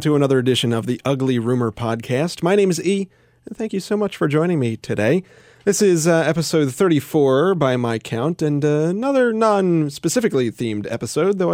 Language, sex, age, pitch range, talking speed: English, male, 30-49, 115-165 Hz, 185 wpm